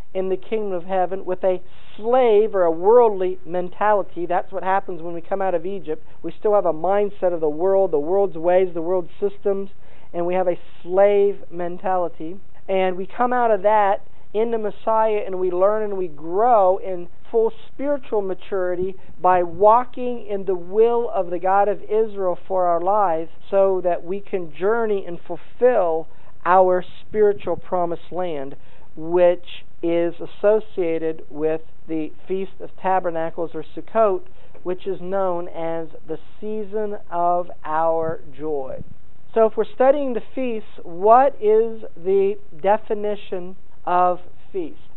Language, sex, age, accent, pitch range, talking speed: English, male, 50-69, American, 175-220 Hz, 150 wpm